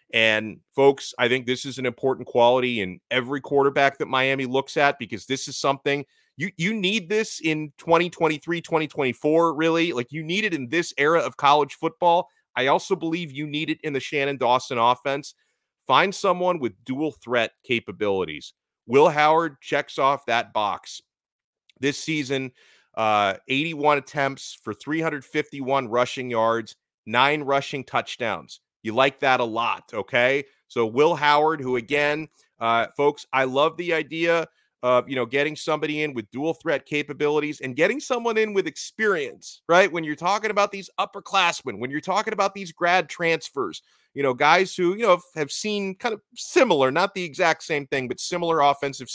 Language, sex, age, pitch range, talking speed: English, male, 30-49, 130-165 Hz, 170 wpm